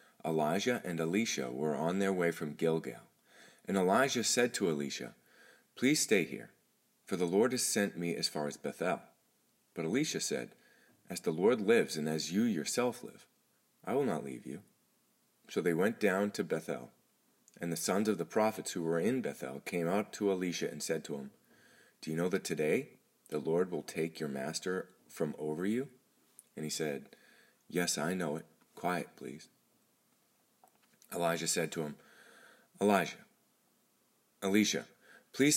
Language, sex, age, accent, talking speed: English, male, 30-49, American, 165 wpm